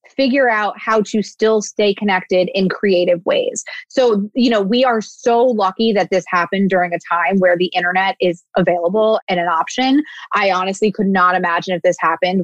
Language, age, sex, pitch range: English, 20-39, female, 190-250 Hz